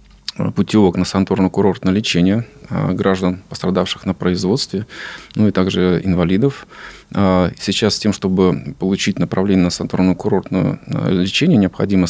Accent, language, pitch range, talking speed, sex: native, Russian, 90-100 Hz, 105 wpm, male